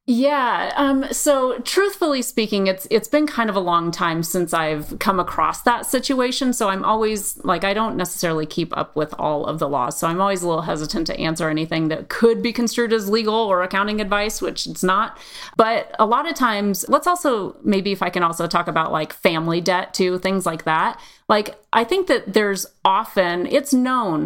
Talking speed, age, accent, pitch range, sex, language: 205 wpm, 30-49, American, 170-235 Hz, female, English